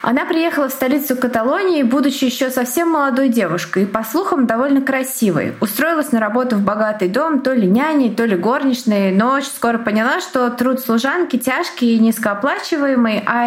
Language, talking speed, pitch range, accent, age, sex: Russian, 170 wpm, 200-275 Hz, native, 20-39, female